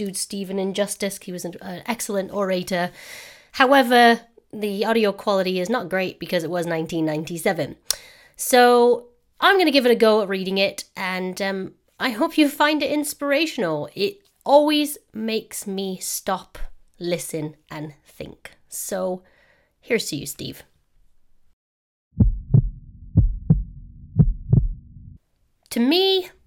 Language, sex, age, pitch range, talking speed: English, female, 30-49, 180-250 Hz, 120 wpm